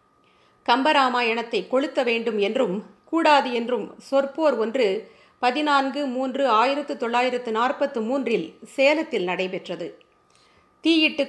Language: Tamil